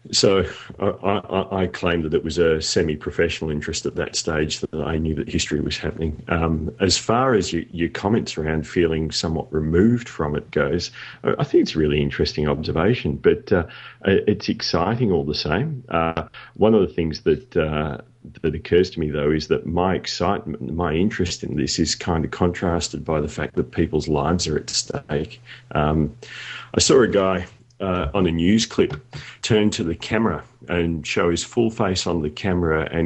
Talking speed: 190 wpm